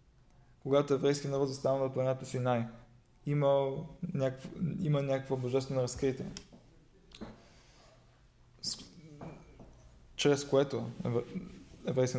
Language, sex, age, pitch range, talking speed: Bulgarian, male, 20-39, 125-145 Hz, 75 wpm